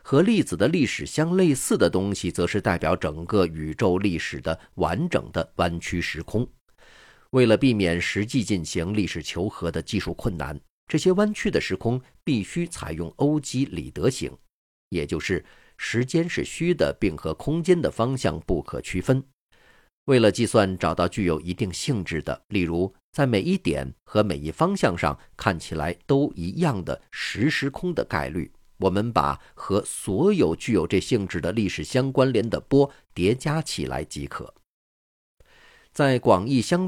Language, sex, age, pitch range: Chinese, male, 50-69, 85-135 Hz